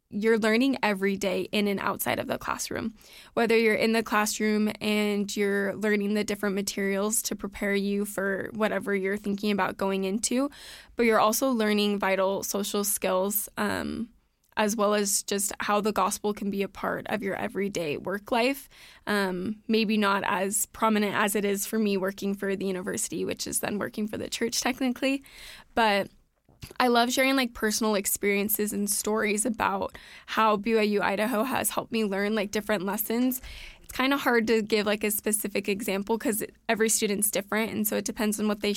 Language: English